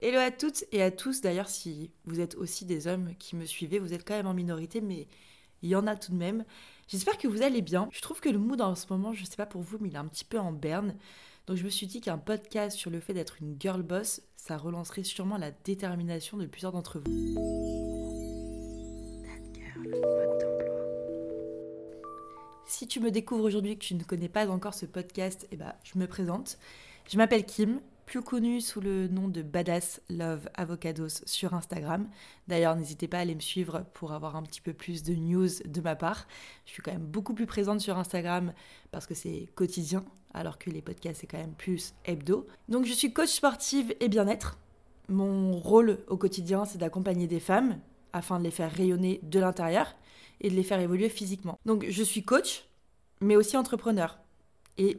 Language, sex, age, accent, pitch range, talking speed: French, female, 20-39, French, 165-205 Hz, 205 wpm